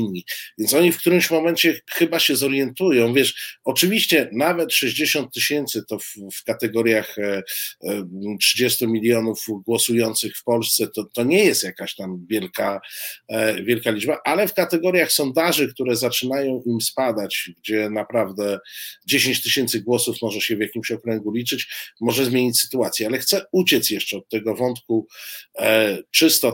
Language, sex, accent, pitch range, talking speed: Polish, male, native, 110-135 Hz, 140 wpm